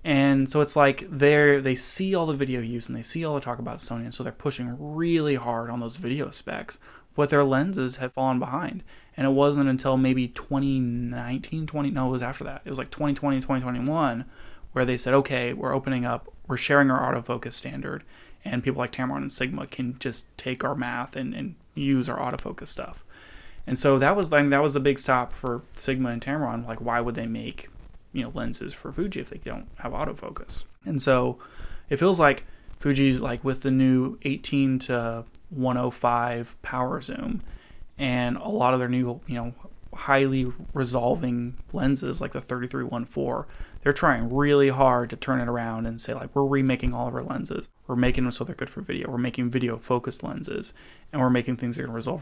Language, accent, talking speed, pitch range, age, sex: English, American, 205 wpm, 120-140 Hz, 20-39, male